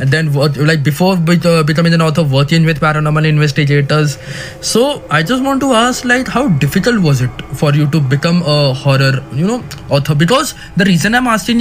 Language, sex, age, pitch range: Hindi, male, 20-39, 150-205 Hz